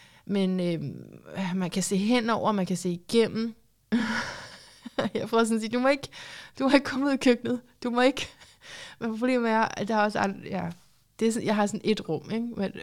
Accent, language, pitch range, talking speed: native, Danish, 180-225 Hz, 185 wpm